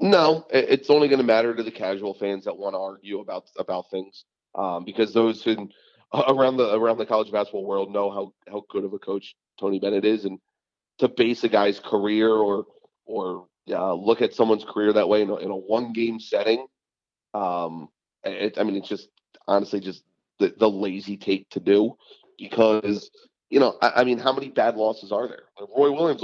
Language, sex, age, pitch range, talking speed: English, male, 30-49, 100-130 Hz, 205 wpm